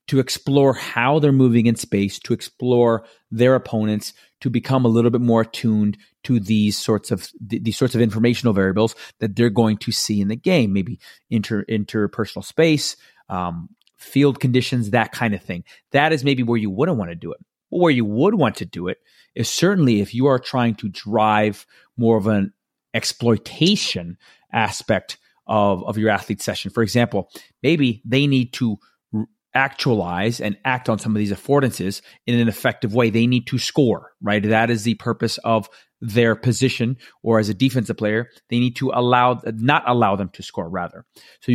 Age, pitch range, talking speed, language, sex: 30-49, 105-125 Hz, 185 wpm, English, male